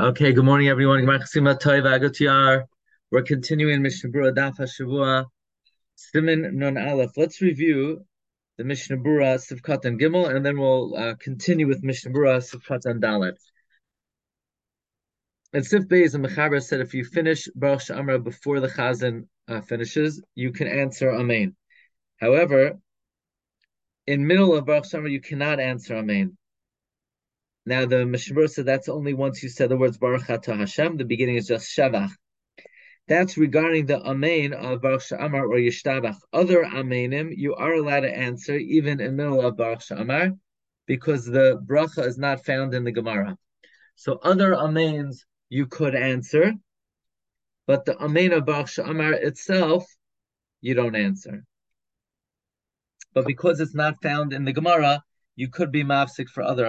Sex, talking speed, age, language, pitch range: male, 150 wpm, 30-49, English, 130-155 Hz